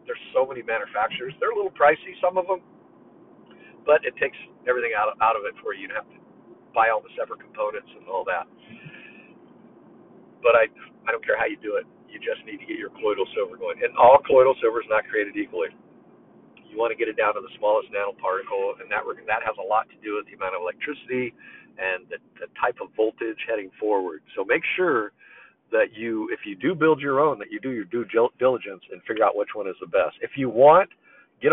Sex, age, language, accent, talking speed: male, 50-69, English, American, 230 wpm